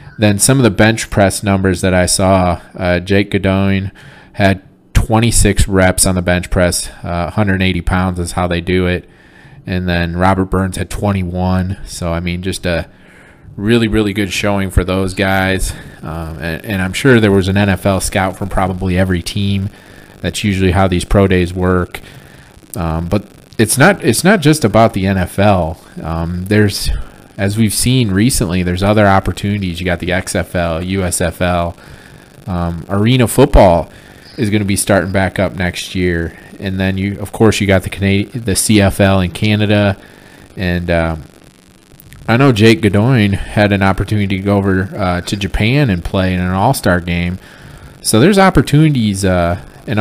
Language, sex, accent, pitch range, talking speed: English, male, American, 90-105 Hz, 170 wpm